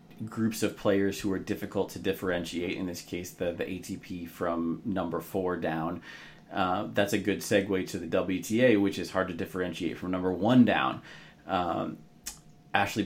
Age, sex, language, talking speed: 30-49, male, English, 170 wpm